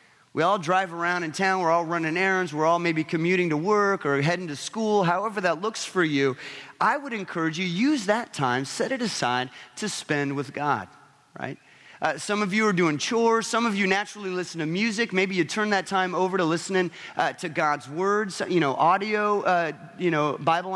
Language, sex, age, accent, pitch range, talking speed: English, male, 30-49, American, 155-200 Hz, 210 wpm